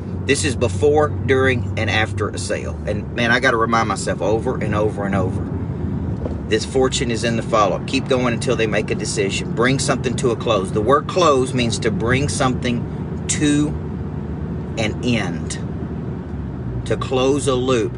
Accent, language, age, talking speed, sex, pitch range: American, English, 40-59, 175 wpm, male, 110-135 Hz